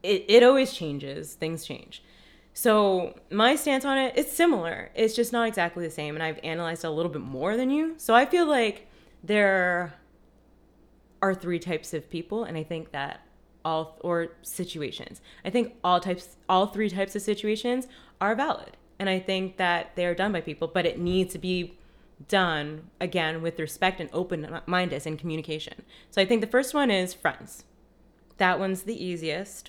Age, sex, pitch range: 20-39, female, 170-220 Hz